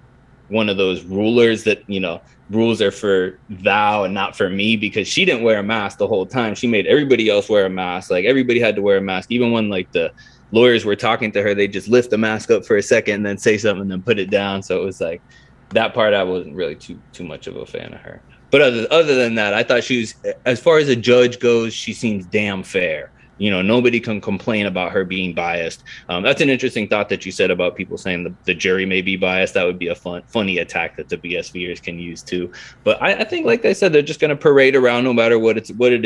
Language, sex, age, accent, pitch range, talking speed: English, male, 20-39, American, 100-135 Hz, 265 wpm